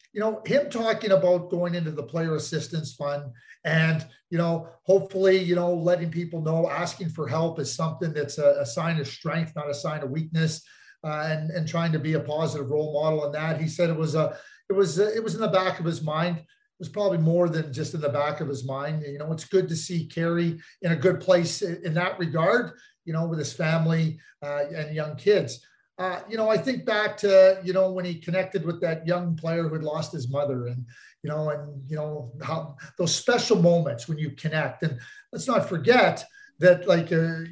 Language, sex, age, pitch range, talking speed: English, male, 40-59, 150-185 Hz, 225 wpm